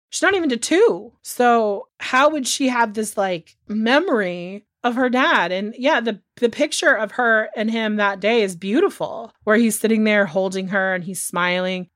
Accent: American